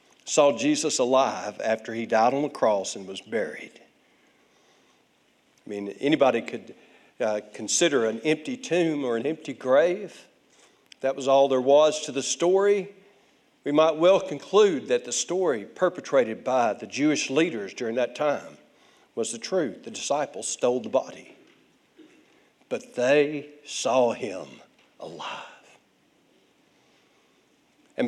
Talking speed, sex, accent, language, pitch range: 135 wpm, male, American, English, 135-190 Hz